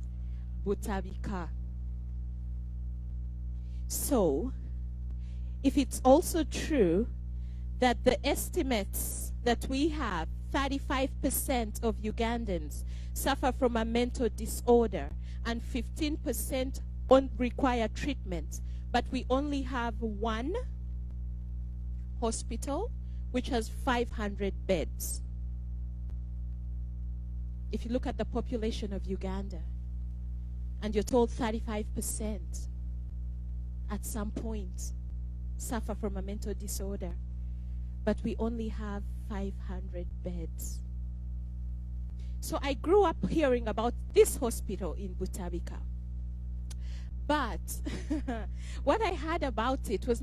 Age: 40-59